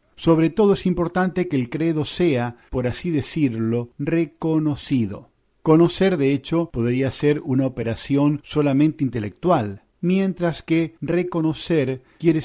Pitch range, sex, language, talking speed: 120-165 Hz, male, Spanish, 120 wpm